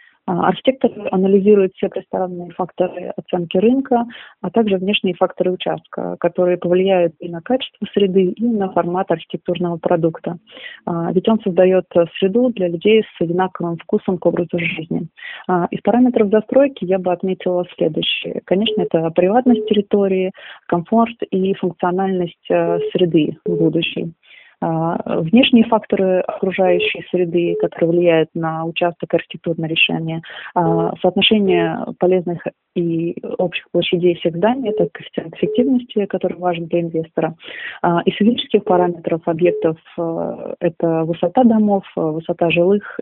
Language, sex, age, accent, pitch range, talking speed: Russian, female, 30-49, native, 170-200 Hz, 115 wpm